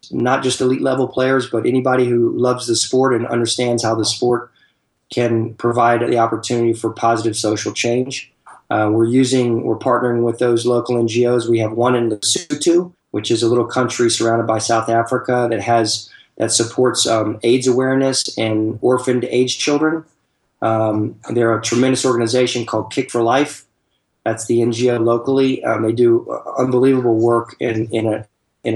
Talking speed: 165 wpm